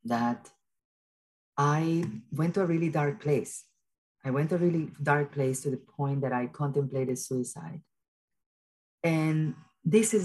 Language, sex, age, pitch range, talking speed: English, female, 40-59, 140-160 Hz, 145 wpm